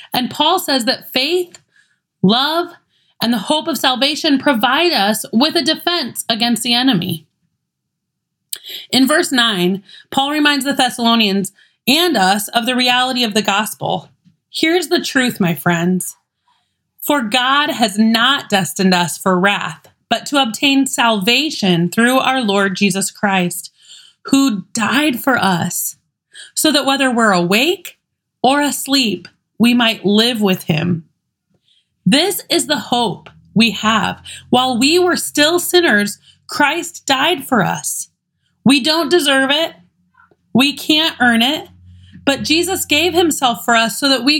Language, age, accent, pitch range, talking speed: English, 30-49, American, 200-290 Hz, 140 wpm